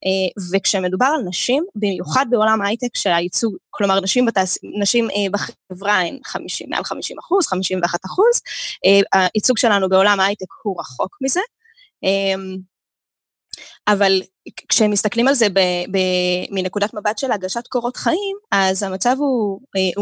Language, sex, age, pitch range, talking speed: Hebrew, female, 20-39, 195-260 Hz, 115 wpm